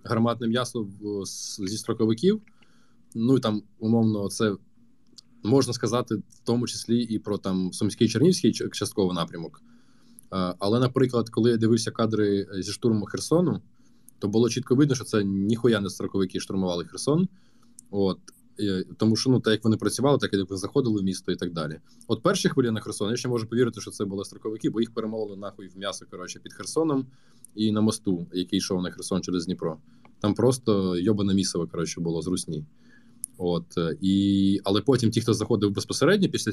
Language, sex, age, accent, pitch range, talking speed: Ukrainian, male, 20-39, native, 95-120 Hz, 170 wpm